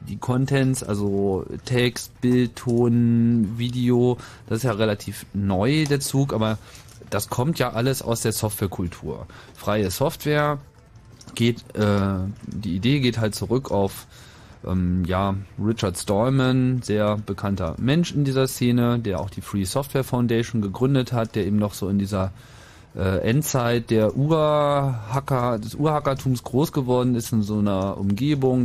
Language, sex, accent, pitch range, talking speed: German, male, German, 105-130 Hz, 145 wpm